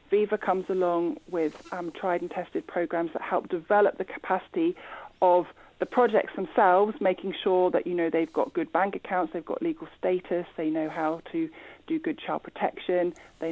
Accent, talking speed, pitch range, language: British, 180 wpm, 170-220 Hz, English